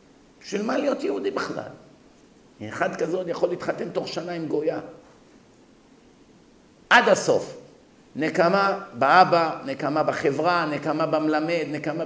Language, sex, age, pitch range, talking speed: Hebrew, male, 50-69, 155-215 Hz, 110 wpm